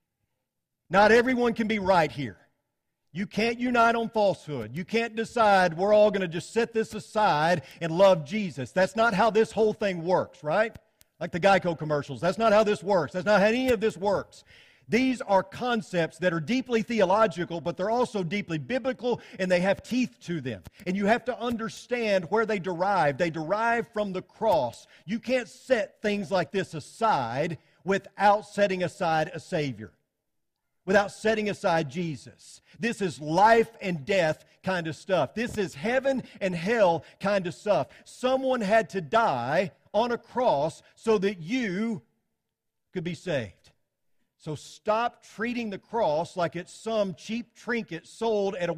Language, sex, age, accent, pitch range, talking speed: English, male, 50-69, American, 170-225 Hz, 170 wpm